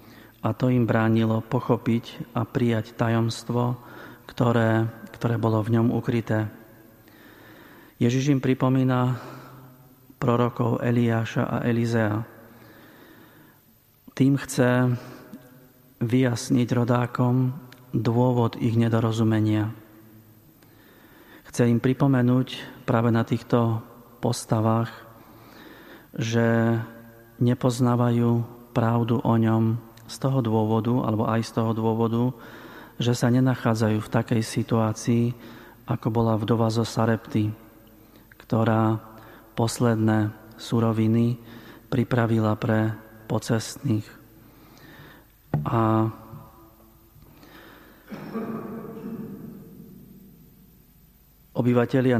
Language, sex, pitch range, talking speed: Slovak, male, 110-125 Hz, 75 wpm